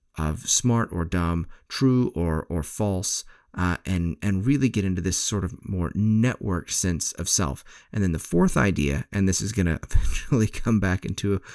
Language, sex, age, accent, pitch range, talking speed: English, male, 30-49, American, 85-105 Hz, 185 wpm